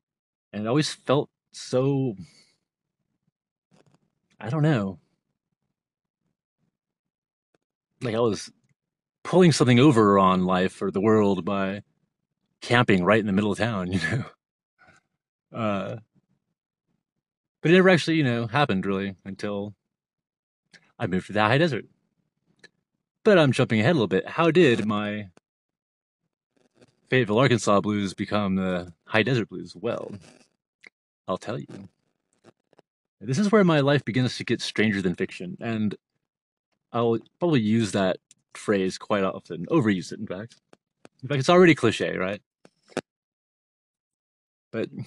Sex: male